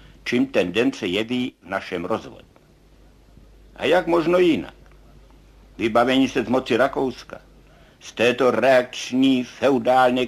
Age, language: 60-79, Czech